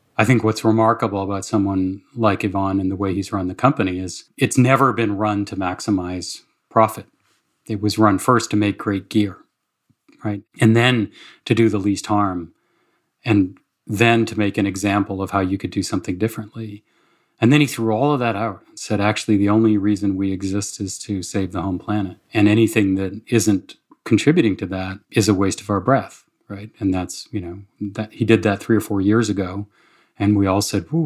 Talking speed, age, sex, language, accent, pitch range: 205 wpm, 40-59, male, English, American, 100-115 Hz